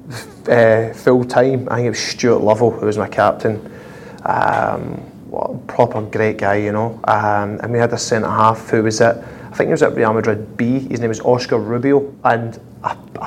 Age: 20-39